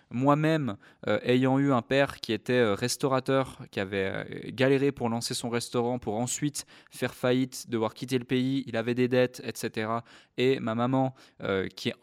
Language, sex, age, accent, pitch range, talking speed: French, male, 20-39, French, 115-135 Hz, 185 wpm